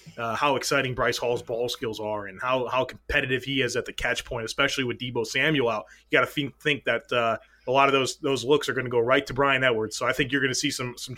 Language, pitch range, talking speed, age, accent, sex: English, 130-155 Hz, 285 wpm, 30-49, American, male